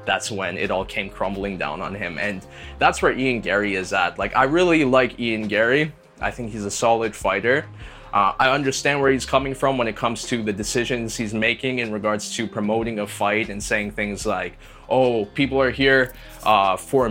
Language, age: English, 20-39